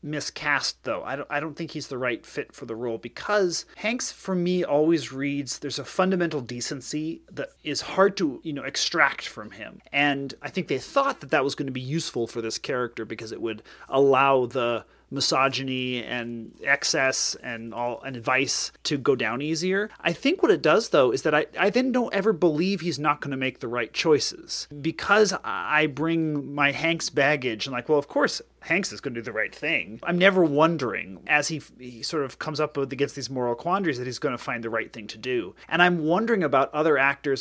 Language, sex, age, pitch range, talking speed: English, male, 30-49, 135-175 Hz, 215 wpm